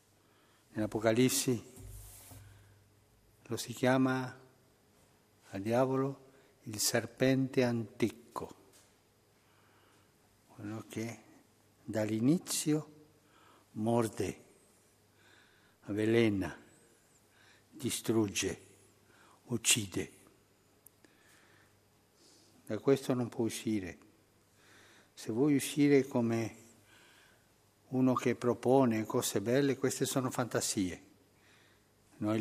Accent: native